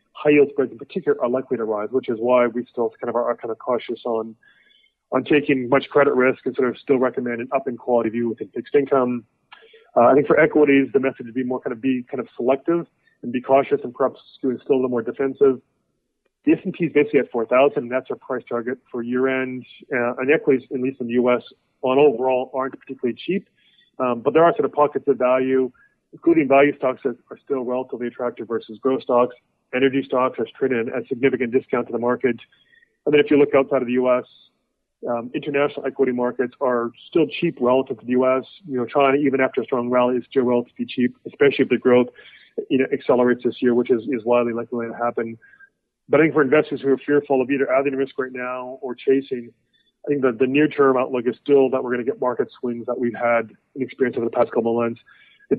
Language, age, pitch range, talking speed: English, 30-49, 120-140 Hz, 230 wpm